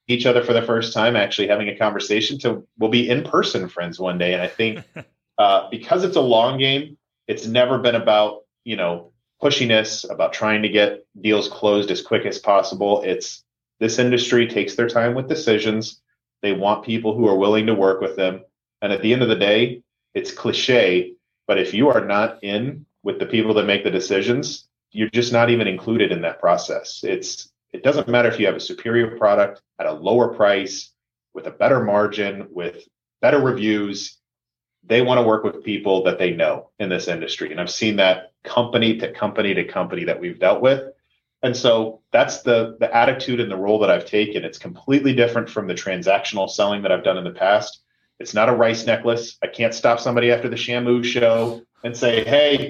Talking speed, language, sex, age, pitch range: 205 wpm, English, male, 30-49, 105-125 Hz